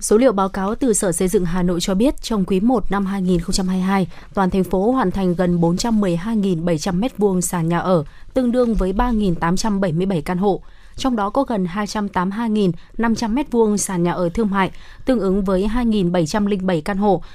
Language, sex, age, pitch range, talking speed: Vietnamese, female, 20-39, 185-225 Hz, 170 wpm